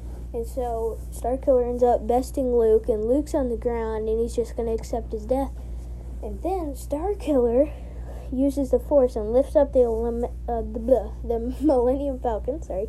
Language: English